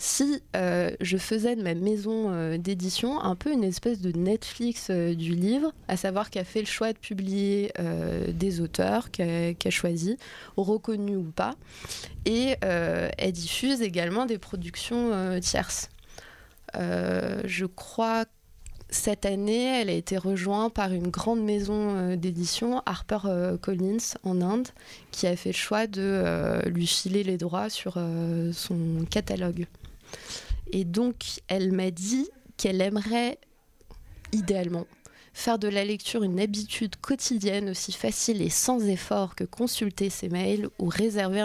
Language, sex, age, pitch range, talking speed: French, female, 20-39, 180-220 Hz, 150 wpm